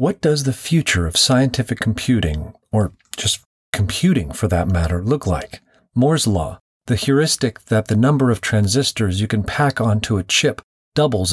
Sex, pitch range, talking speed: male, 100-130 Hz, 165 wpm